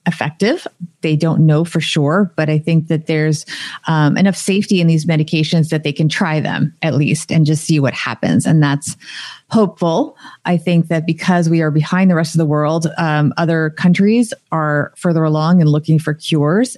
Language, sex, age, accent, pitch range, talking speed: English, female, 30-49, American, 160-185 Hz, 195 wpm